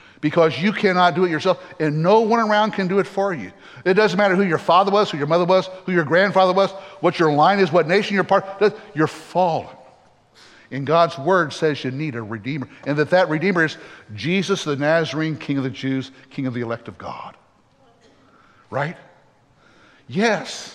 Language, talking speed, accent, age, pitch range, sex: English, 200 wpm, American, 60-79, 135-175 Hz, male